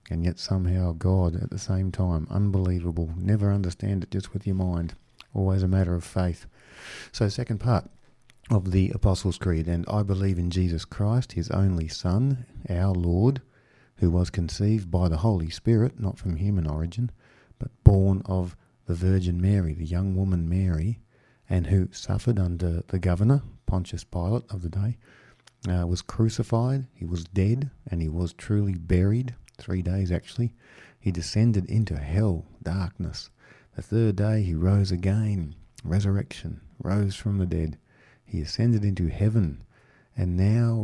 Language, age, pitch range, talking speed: English, 50-69, 90-110 Hz, 155 wpm